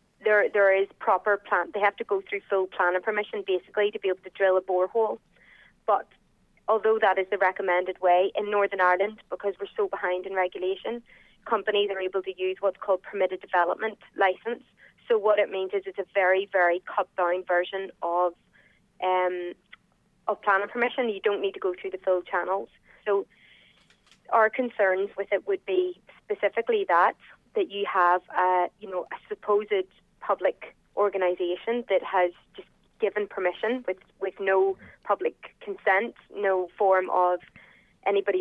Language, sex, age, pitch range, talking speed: English, female, 20-39, 185-210 Hz, 165 wpm